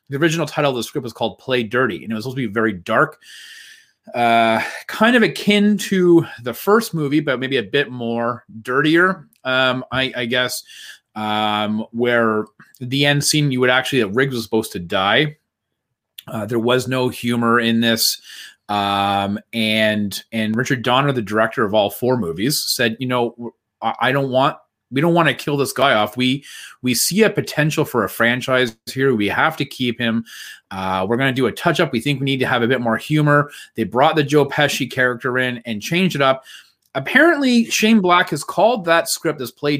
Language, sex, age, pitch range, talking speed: English, male, 30-49, 115-150 Hz, 205 wpm